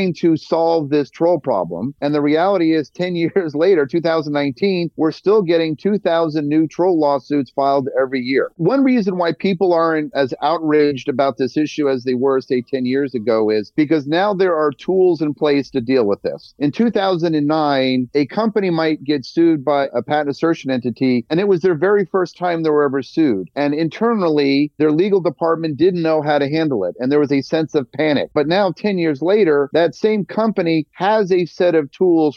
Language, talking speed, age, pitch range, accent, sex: English, 195 wpm, 40-59, 140-175 Hz, American, male